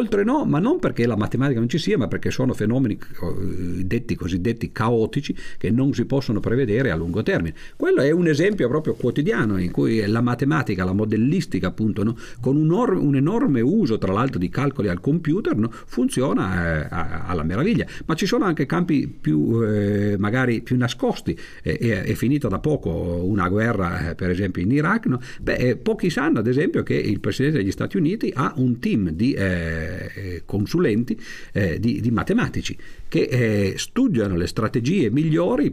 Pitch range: 95-140 Hz